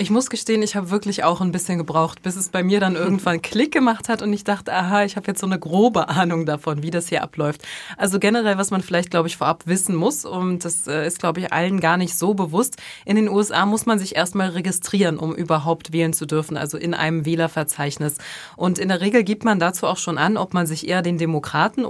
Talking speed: 240 wpm